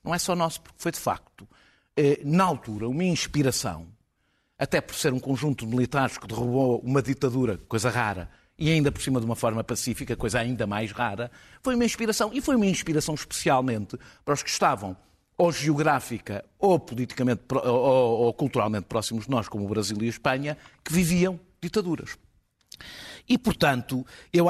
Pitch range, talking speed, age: 105-135 Hz, 170 wpm, 50-69